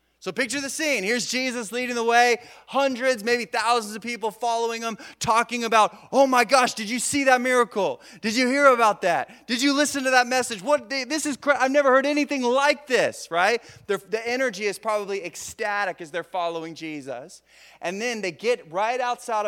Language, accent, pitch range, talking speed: English, American, 170-240 Hz, 195 wpm